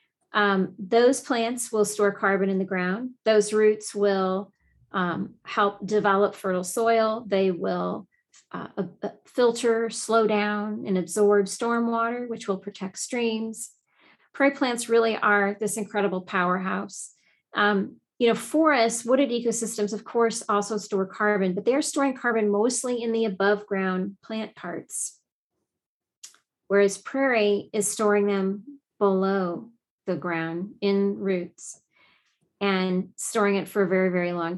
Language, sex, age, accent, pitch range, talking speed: English, female, 40-59, American, 195-235 Hz, 135 wpm